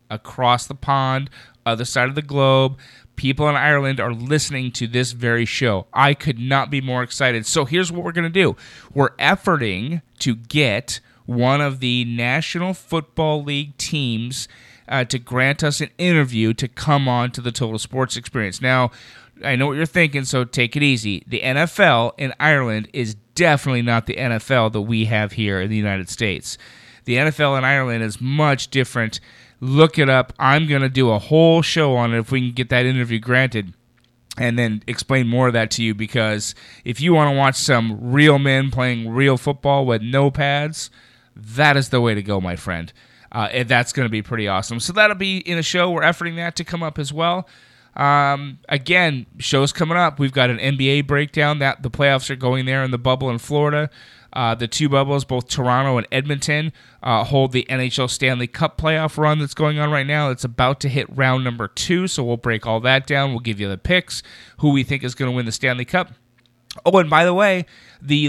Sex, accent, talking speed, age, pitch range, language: male, American, 210 wpm, 30-49, 120-150 Hz, English